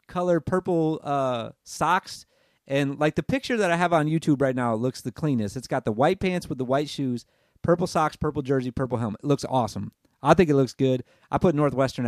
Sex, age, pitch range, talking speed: male, 30-49, 135-170 Hz, 220 wpm